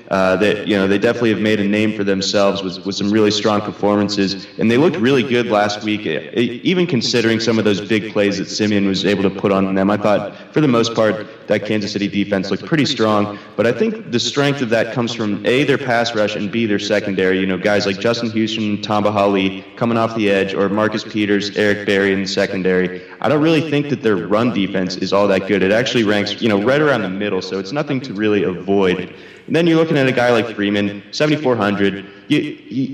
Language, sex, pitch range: English, male, 100-120 Hz